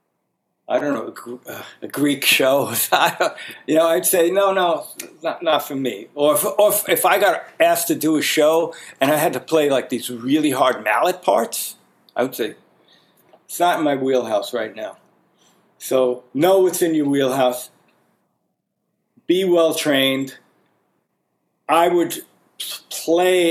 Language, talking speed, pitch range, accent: English, 150 wpm, 135-195 Hz, American